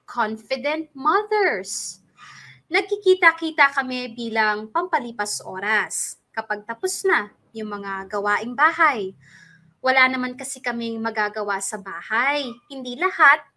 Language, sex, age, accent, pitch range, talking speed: English, female, 20-39, Filipino, 210-290 Hz, 100 wpm